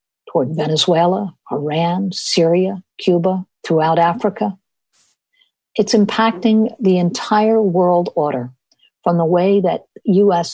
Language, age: English, 50-69